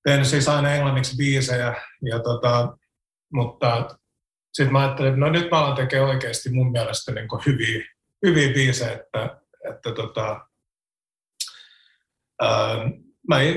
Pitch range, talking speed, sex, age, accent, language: 120-140 Hz, 95 wpm, male, 30-49, native, Finnish